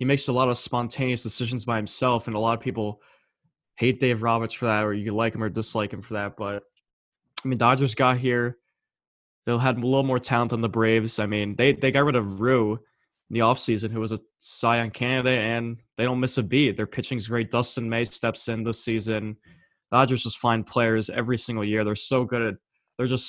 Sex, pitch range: male, 110-125 Hz